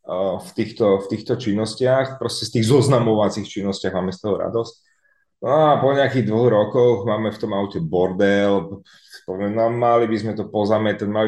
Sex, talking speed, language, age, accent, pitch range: male, 170 wpm, Czech, 30-49, native, 100-125 Hz